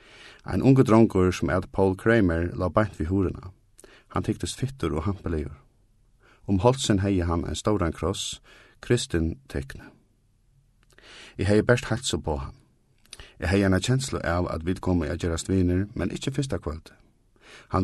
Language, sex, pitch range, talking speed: English, male, 85-110 Hz, 160 wpm